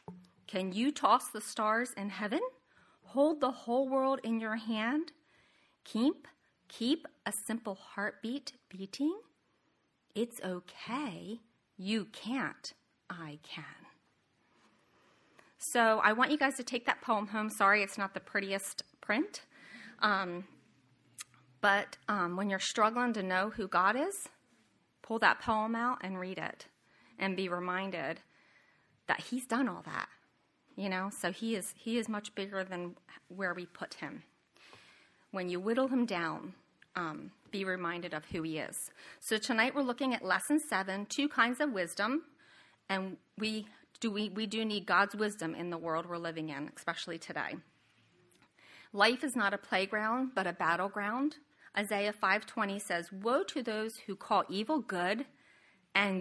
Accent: American